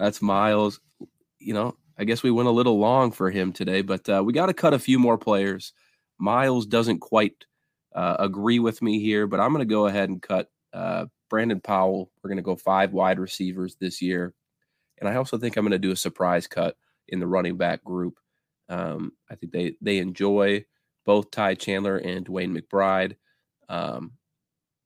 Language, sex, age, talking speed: English, male, 20-39, 195 wpm